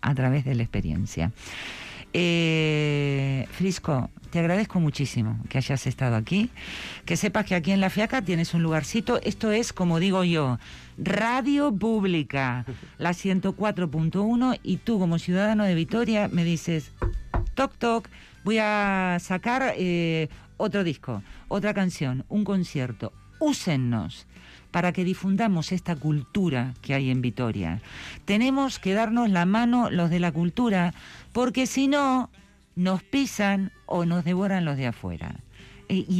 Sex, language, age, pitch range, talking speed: female, Spanish, 50-69, 140-205 Hz, 140 wpm